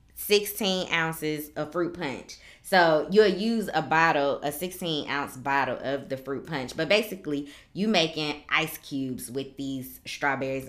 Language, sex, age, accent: English, female, 20-39, American